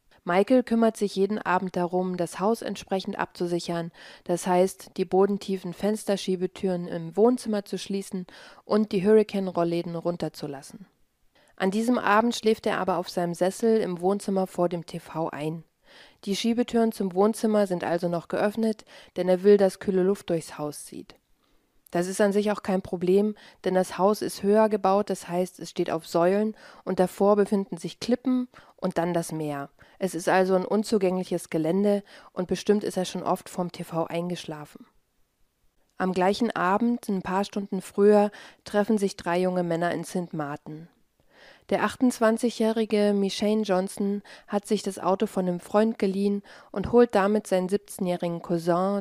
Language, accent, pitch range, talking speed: German, German, 175-210 Hz, 160 wpm